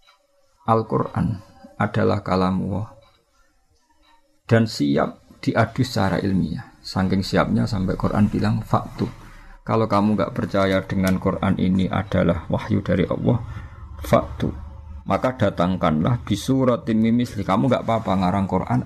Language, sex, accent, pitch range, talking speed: Indonesian, male, native, 90-110 Hz, 120 wpm